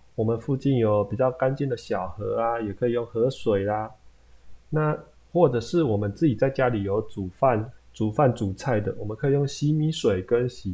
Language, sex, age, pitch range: Chinese, male, 20-39, 105-135 Hz